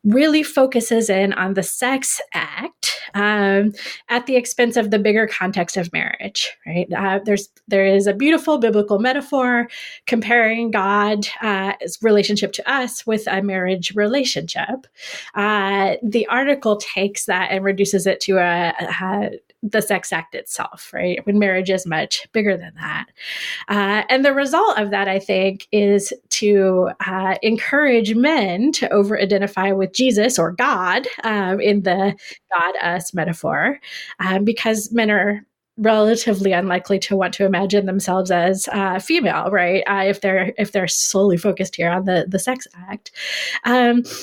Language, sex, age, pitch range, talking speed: English, female, 20-39, 190-235 Hz, 155 wpm